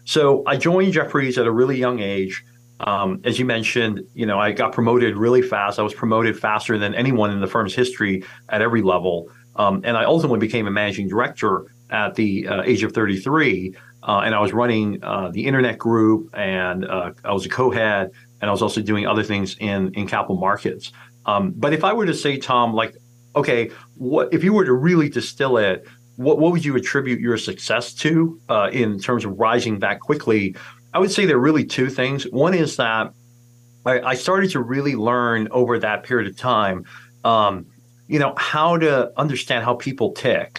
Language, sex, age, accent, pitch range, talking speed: English, male, 40-59, American, 105-130 Hz, 205 wpm